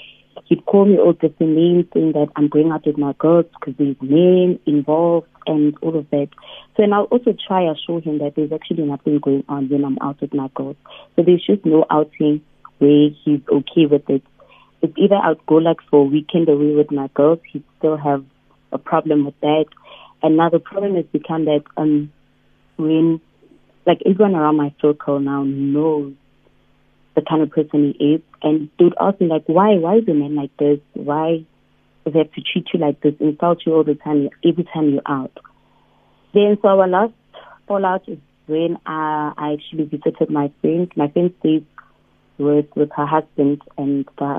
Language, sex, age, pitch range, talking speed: English, female, 30-49, 145-170 Hz, 195 wpm